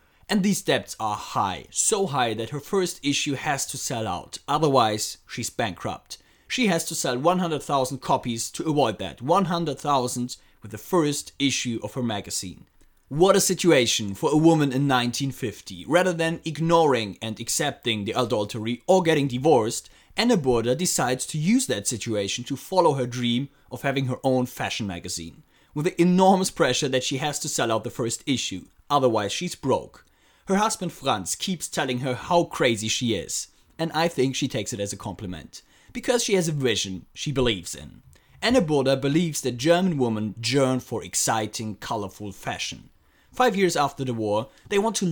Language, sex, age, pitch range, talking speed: English, male, 30-49, 115-165 Hz, 175 wpm